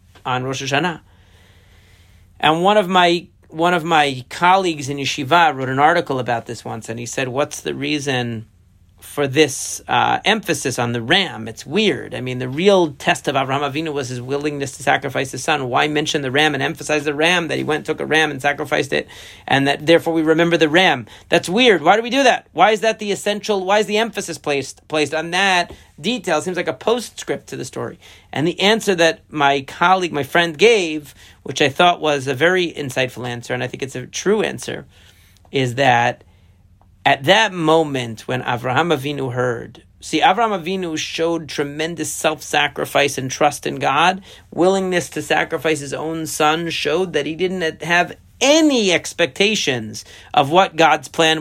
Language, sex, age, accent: English, male, 40-59, American